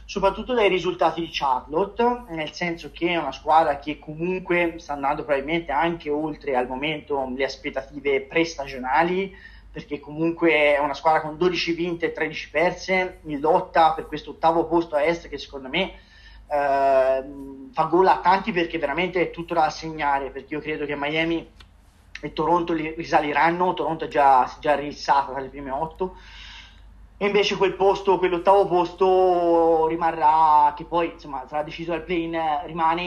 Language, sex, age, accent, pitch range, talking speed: Italian, male, 30-49, native, 145-180 Hz, 160 wpm